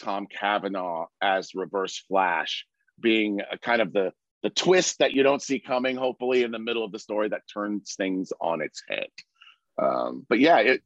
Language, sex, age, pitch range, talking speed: English, male, 40-59, 100-140 Hz, 190 wpm